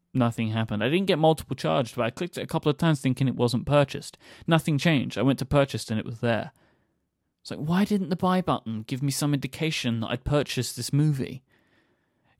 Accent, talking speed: British, 220 wpm